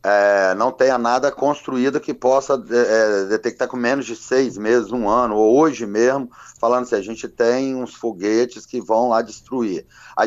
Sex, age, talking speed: male, 40-59, 185 wpm